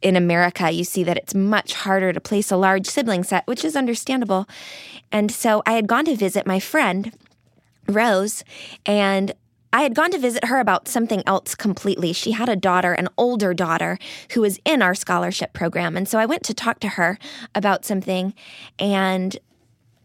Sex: female